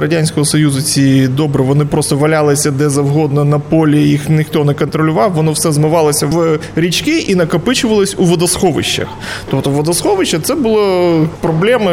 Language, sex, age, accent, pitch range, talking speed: Ukrainian, male, 20-39, native, 145-185 Hz, 145 wpm